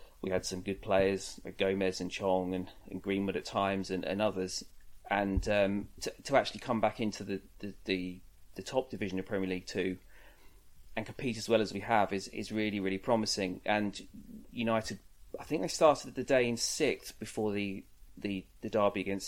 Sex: male